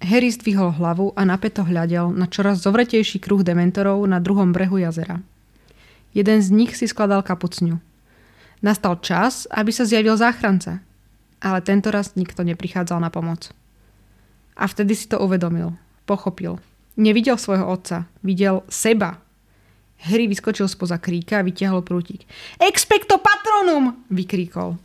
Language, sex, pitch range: Slovak, female, 175-215 Hz